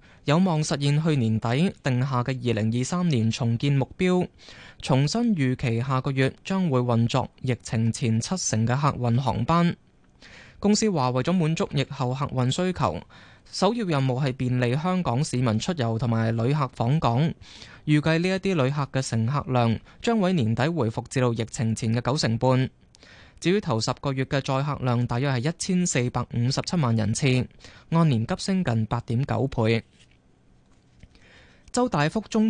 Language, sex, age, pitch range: Chinese, male, 20-39, 115-160 Hz